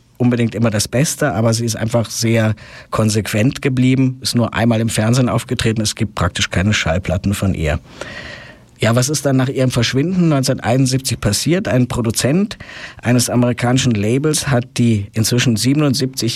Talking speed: 155 wpm